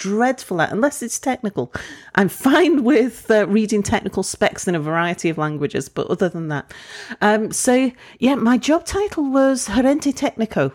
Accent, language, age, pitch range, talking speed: British, English, 40-59, 155-210 Hz, 165 wpm